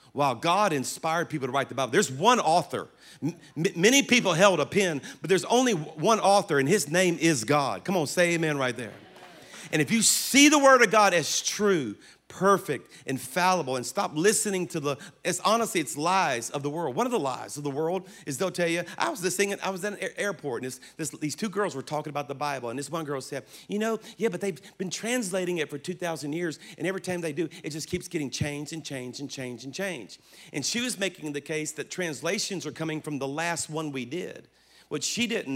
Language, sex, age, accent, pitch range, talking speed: English, male, 40-59, American, 150-200 Hz, 235 wpm